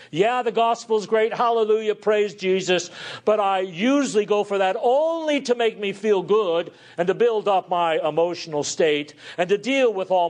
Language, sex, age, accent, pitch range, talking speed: English, male, 50-69, American, 155-230 Hz, 180 wpm